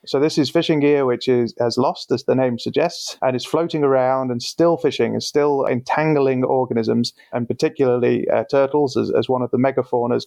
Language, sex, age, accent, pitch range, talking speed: English, male, 30-49, British, 130-150 Hz, 200 wpm